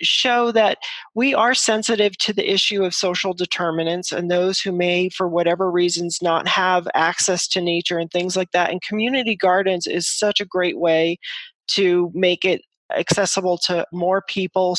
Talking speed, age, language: 170 wpm, 40-59, English